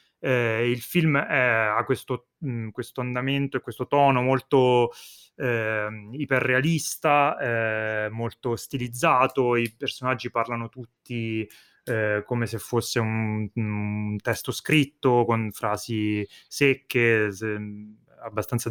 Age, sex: 20-39, male